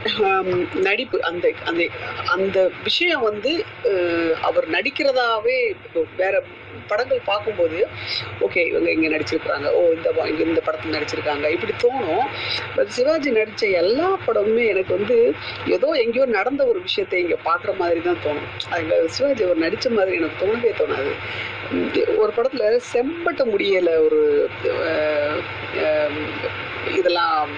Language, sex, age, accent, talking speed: Tamil, female, 40-59, native, 105 wpm